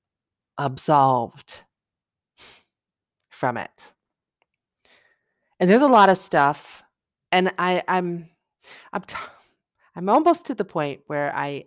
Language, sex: English, female